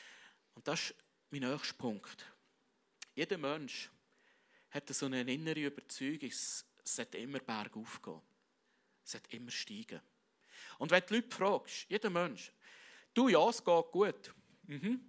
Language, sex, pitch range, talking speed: English, male, 140-215 Hz, 140 wpm